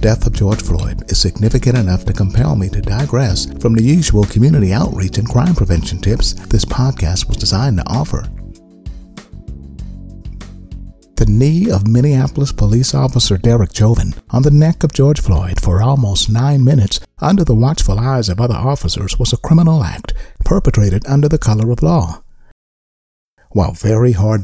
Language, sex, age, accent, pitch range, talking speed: English, male, 60-79, American, 95-125 Hz, 160 wpm